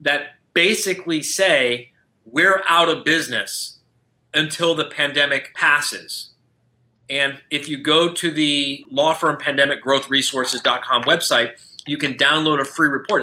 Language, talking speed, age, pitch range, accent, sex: English, 125 wpm, 30-49, 140-165 Hz, American, male